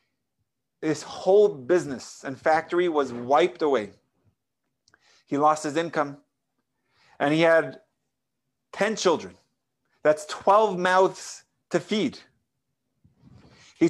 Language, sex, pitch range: English, male, 140-180 Hz